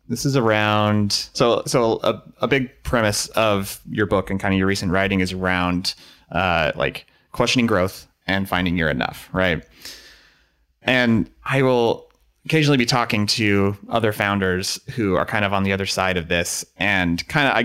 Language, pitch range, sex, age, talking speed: English, 90-115 Hz, male, 30-49, 175 wpm